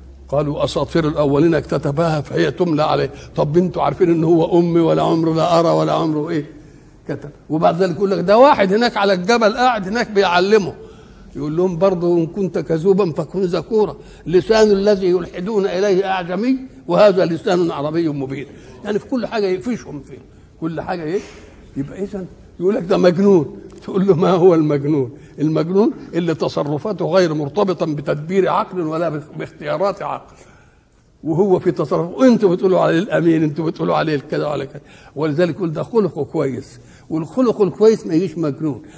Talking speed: 155 wpm